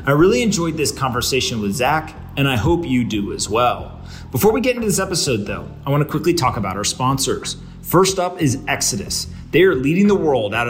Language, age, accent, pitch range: English, 30-49, American, 115-170 Hz